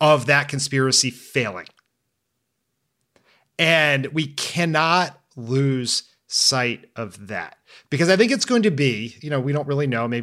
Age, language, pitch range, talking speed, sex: 30-49, English, 120-150 Hz, 145 wpm, male